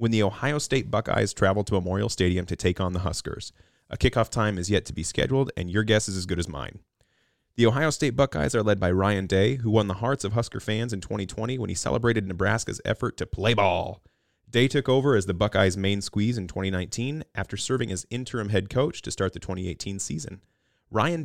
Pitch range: 90-115 Hz